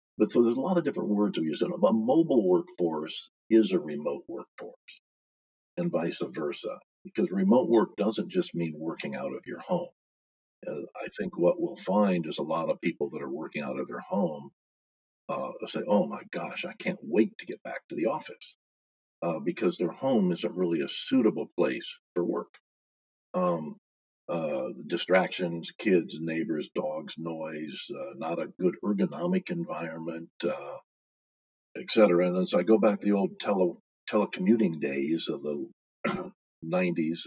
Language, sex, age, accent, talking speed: English, male, 50-69, American, 165 wpm